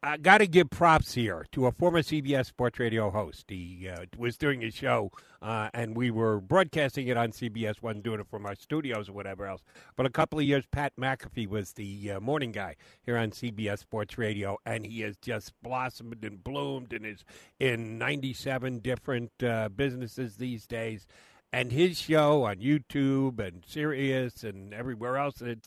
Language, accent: English, American